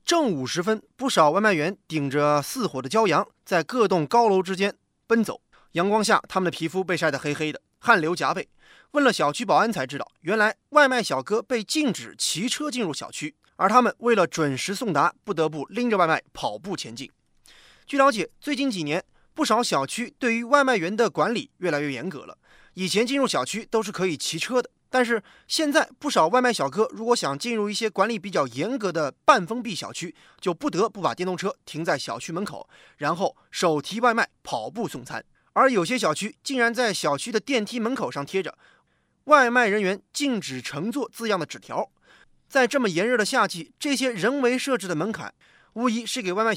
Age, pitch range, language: 20-39, 175-245 Hz, Chinese